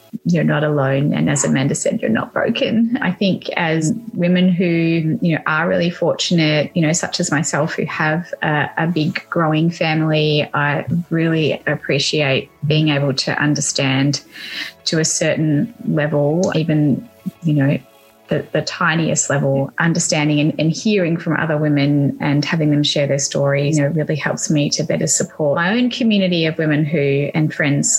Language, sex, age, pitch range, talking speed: English, female, 20-39, 145-170 Hz, 170 wpm